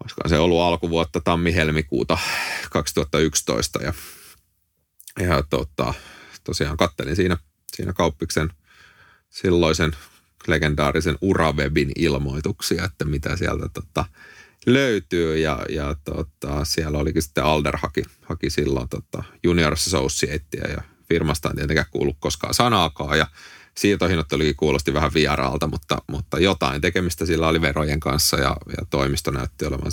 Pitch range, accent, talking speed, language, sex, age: 75-85 Hz, native, 120 wpm, Finnish, male, 30-49